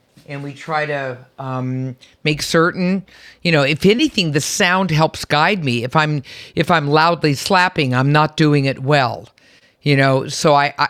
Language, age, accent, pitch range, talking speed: English, 50-69, American, 150-205 Hz, 170 wpm